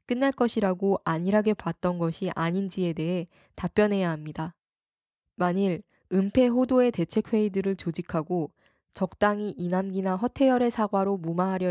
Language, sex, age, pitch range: Korean, female, 10-29, 170-210 Hz